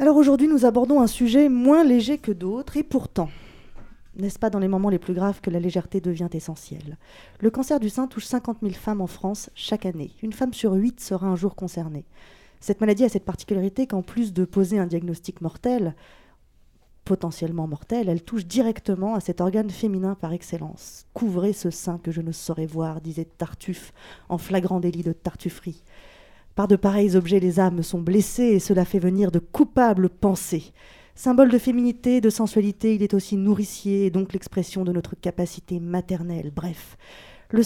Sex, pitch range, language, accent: female, 180-220 Hz, French, French